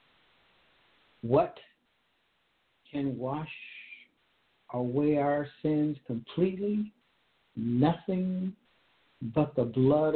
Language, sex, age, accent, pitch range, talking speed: English, male, 60-79, American, 120-135 Hz, 65 wpm